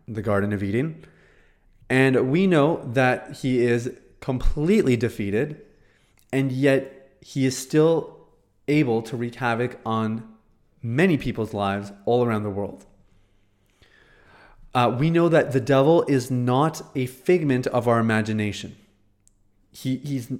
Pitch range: 110-140 Hz